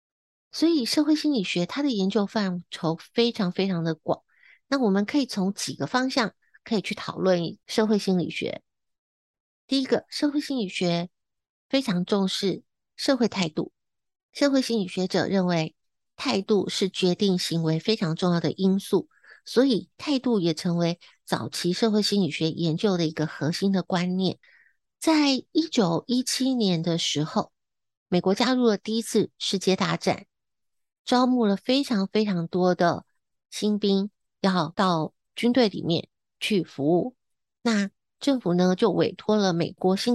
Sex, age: female, 50-69